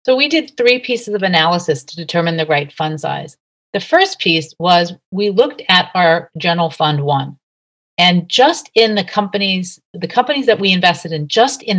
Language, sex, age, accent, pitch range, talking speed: English, female, 40-59, American, 160-200 Hz, 190 wpm